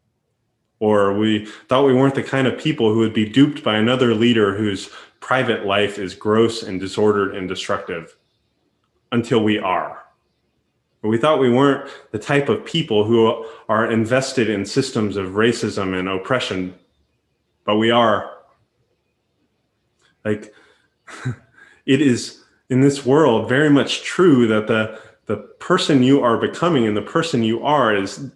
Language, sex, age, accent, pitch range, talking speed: English, male, 20-39, American, 105-125 Hz, 150 wpm